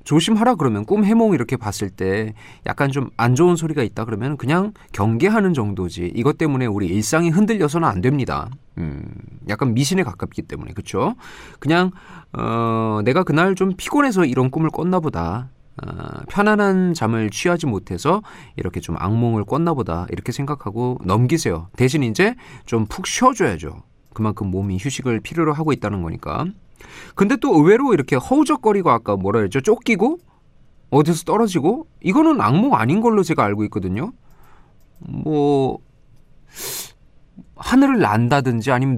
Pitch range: 110-170 Hz